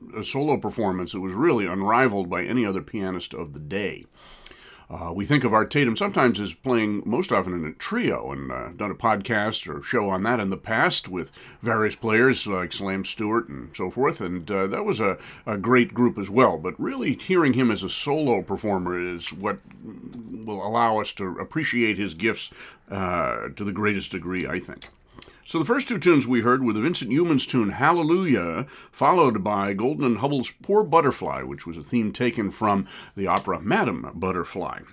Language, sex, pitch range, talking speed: English, male, 95-125 Hz, 195 wpm